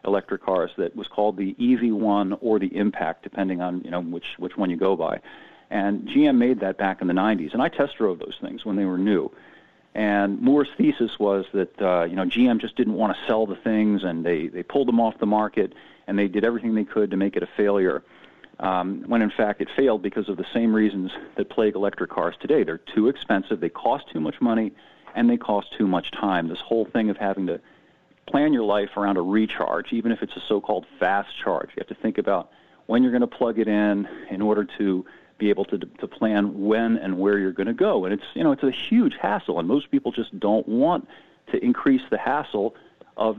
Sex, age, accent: male, 40-59, American